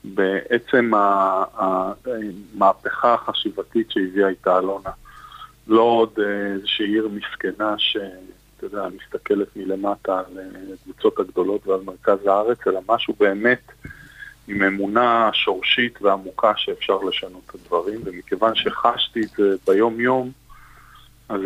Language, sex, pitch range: Hebrew, male, 95-125 Hz